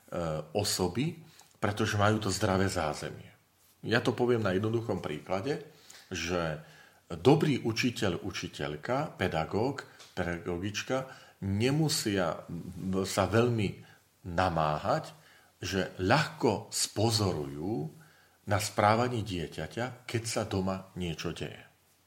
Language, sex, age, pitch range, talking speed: Slovak, male, 40-59, 90-110 Hz, 90 wpm